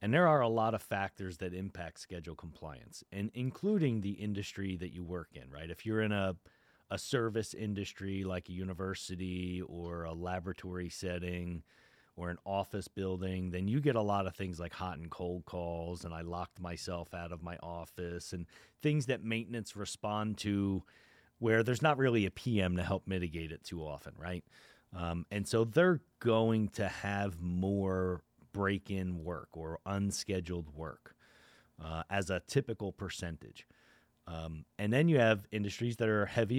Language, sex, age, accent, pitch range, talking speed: English, male, 30-49, American, 90-105 Hz, 170 wpm